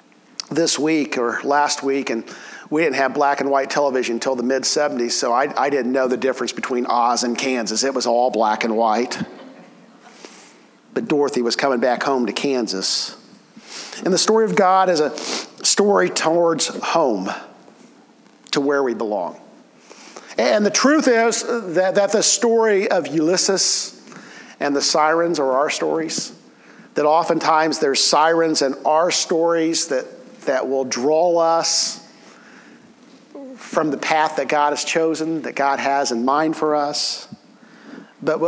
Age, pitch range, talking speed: 50-69, 140-215 Hz, 155 wpm